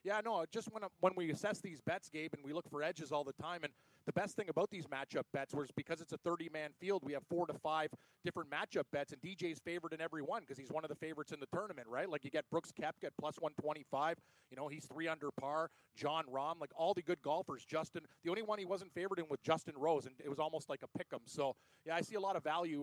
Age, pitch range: 30-49, 150-175 Hz